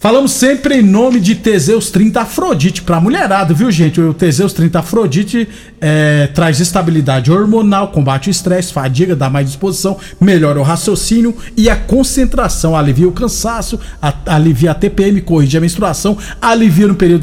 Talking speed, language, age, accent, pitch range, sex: 155 wpm, Portuguese, 50-69, Brazilian, 165-215 Hz, male